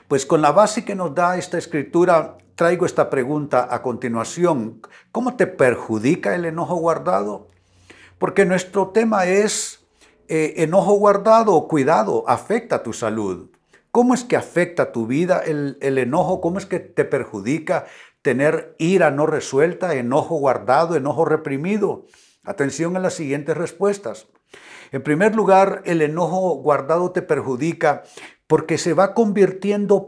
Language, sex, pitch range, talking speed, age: Spanish, male, 145-195 Hz, 140 wpm, 60-79